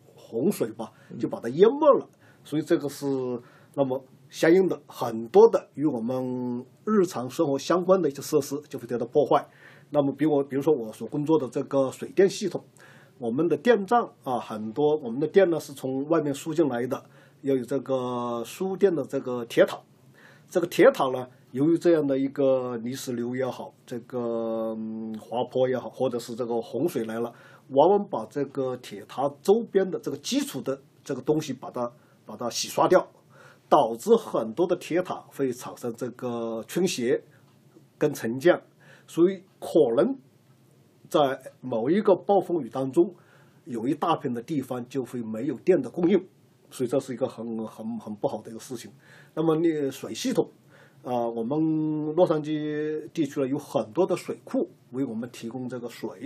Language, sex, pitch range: Chinese, male, 125-160 Hz